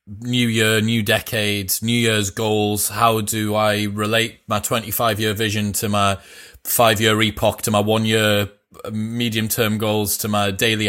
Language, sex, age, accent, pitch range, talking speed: English, male, 20-39, British, 100-115 Hz, 145 wpm